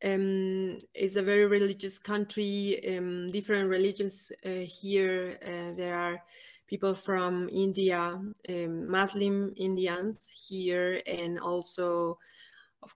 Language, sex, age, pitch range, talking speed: English, female, 20-39, 175-200 Hz, 110 wpm